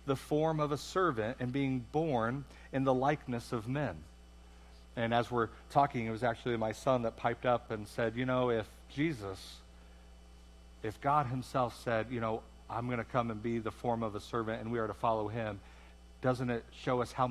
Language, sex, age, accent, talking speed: English, male, 50-69, American, 205 wpm